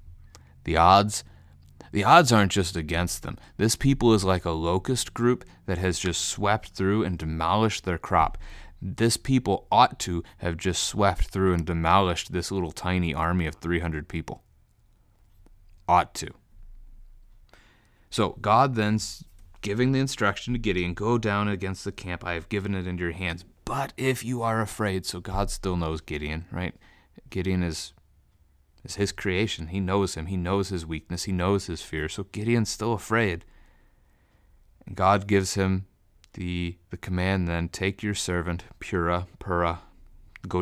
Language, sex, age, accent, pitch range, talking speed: English, male, 30-49, American, 85-100 Hz, 160 wpm